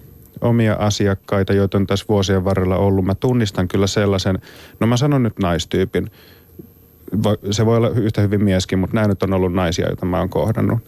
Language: Finnish